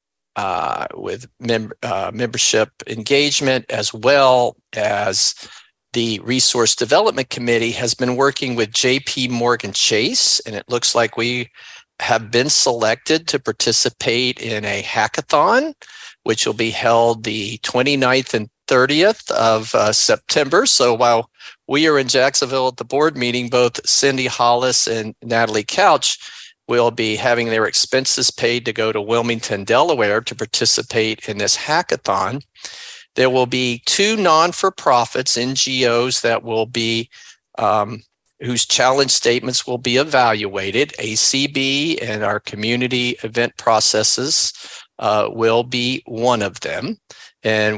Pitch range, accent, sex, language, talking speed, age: 115-130 Hz, American, male, English, 130 wpm, 50-69